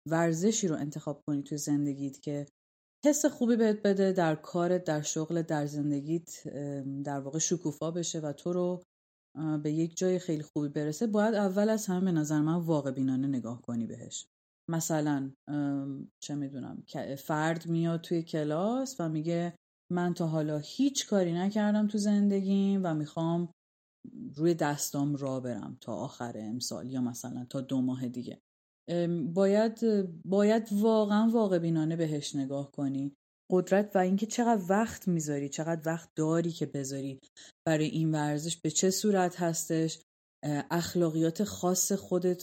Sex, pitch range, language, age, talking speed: female, 145-180 Hz, Persian, 30-49, 145 wpm